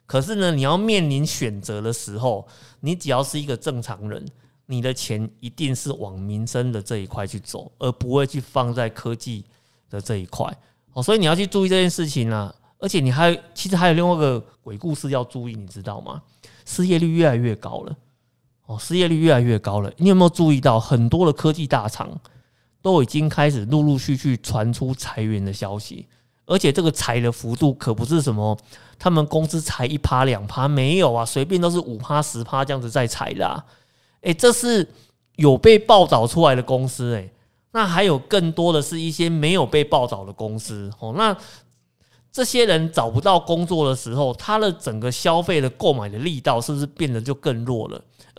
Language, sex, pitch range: Chinese, male, 115-160 Hz